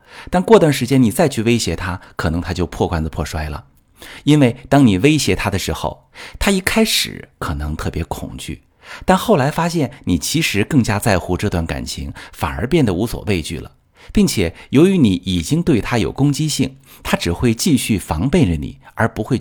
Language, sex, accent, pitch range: Chinese, male, native, 90-135 Hz